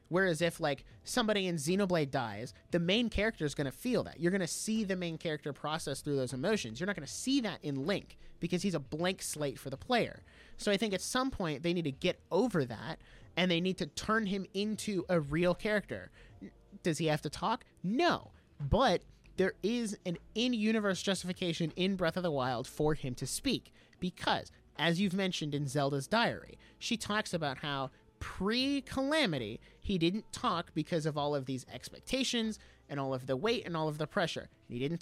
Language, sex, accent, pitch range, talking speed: English, male, American, 140-205 Hz, 195 wpm